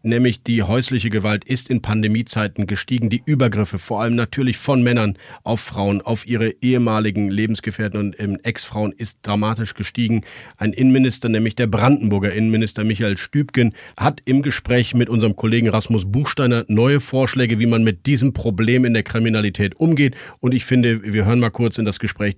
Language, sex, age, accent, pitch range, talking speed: German, male, 40-59, German, 100-120 Hz, 170 wpm